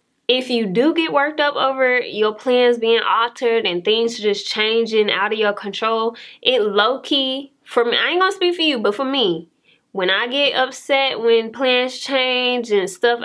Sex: female